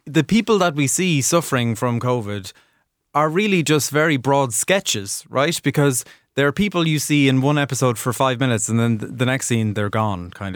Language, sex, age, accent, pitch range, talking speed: English, male, 20-39, Irish, 110-145 Hz, 200 wpm